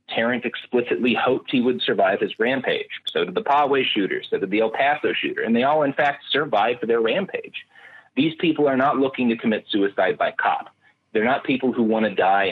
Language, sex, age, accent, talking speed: English, male, 30-49, American, 215 wpm